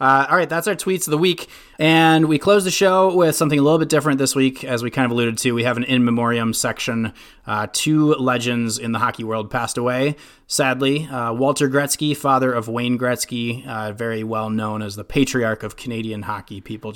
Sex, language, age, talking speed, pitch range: male, English, 30-49, 220 wpm, 110-135 Hz